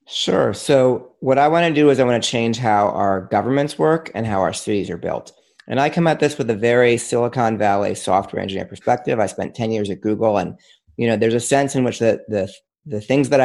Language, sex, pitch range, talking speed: English, male, 105-130 Hz, 240 wpm